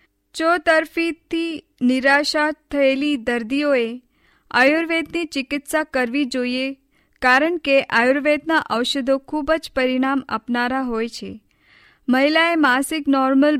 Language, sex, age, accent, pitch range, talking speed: Hindi, female, 20-39, native, 250-290 Hz, 70 wpm